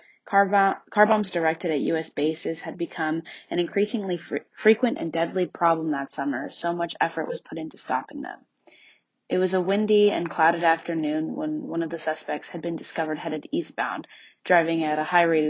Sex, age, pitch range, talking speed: female, 20-39, 160-185 Hz, 180 wpm